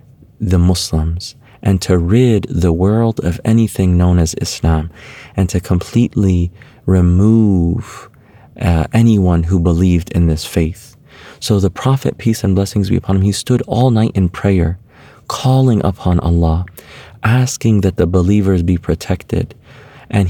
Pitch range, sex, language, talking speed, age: 90-115 Hz, male, English, 140 wpm, 30-49